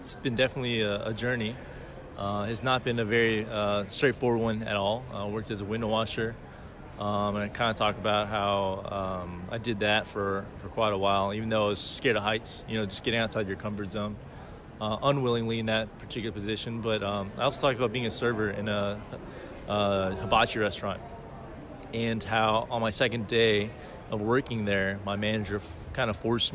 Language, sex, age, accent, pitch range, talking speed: English, male, 20-39, American, 105-120 Hz, 210 wpm